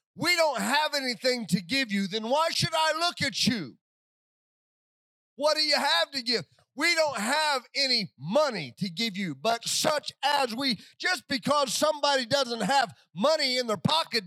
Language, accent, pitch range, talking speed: English, American, 205-260 Hz, 175 wpm